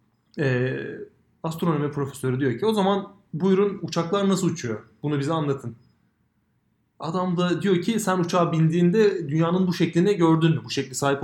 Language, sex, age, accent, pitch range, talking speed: Turkish, male, 30-49, native, 135-185 Hz, 150 wpm